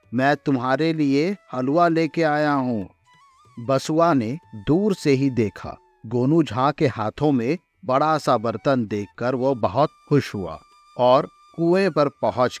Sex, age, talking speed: male, 50-69, 150 wpm